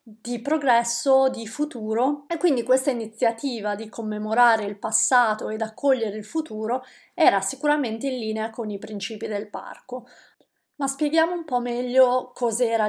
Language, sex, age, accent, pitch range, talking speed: Italian, female, 30-49, native, 215-270 Hz, 145 wpm